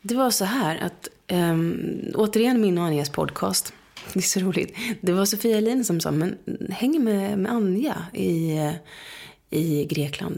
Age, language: 30-49, English